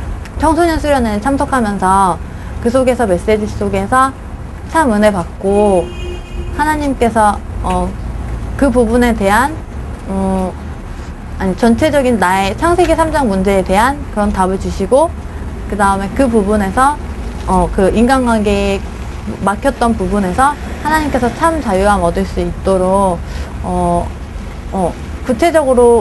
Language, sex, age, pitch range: Korean, female, 20-39, 190-250 Hz